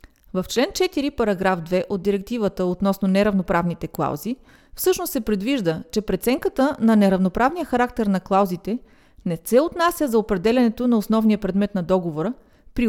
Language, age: Bulgarian, 30-49